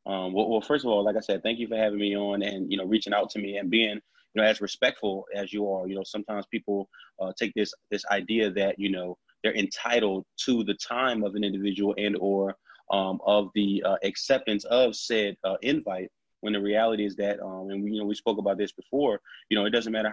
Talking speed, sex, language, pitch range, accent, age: 240 wpm, male, English, 100-110 Hz, American, 20-39